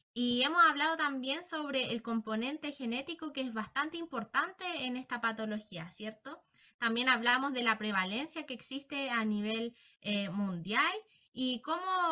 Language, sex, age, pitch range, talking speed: Romanian, female, 10-29, 220-280 Hz, 145 wpm